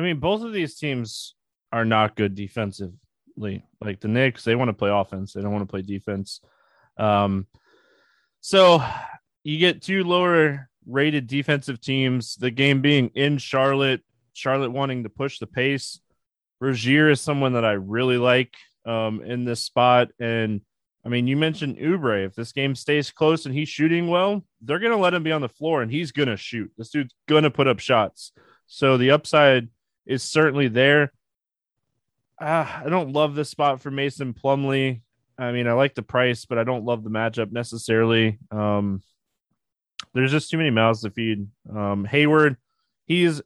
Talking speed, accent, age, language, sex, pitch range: 180 wpm, American, 20-39, English, male, 115-150 Hz